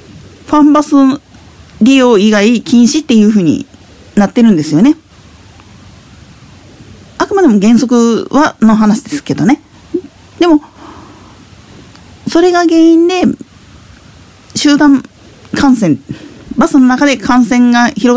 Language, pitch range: Japanese, 205-285 Hz